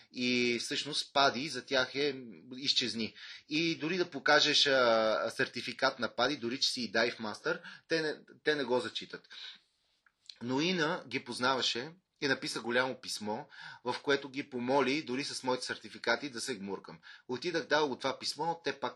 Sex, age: male, 30-49